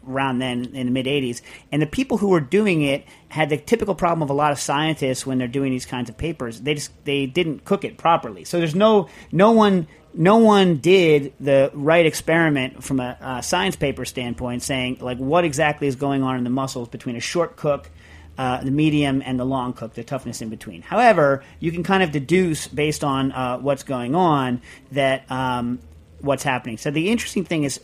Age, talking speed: 40-59, 215 wpm